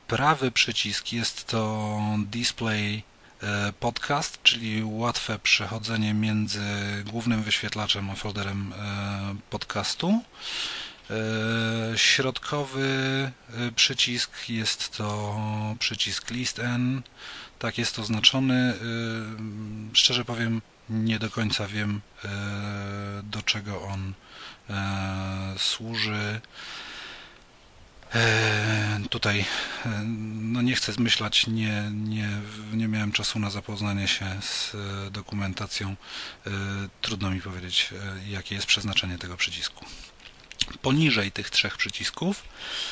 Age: 30-49